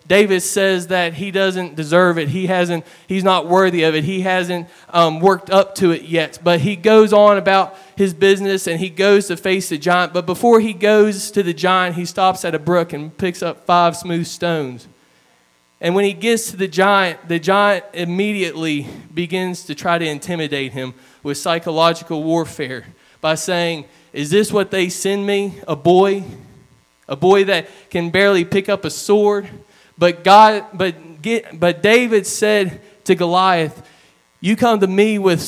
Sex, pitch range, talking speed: male, 170-200 Hz, 180 wpm